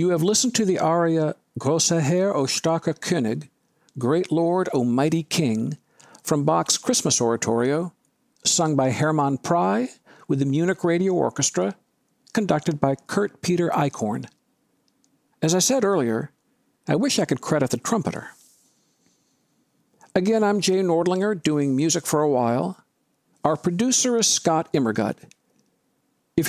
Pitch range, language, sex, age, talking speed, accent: 150-200 Hz, English, male, 60-79, 135 wpm, American